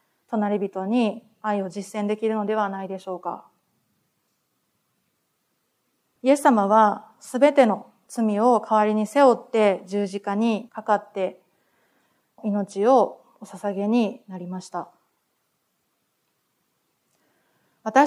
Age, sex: 30-49, female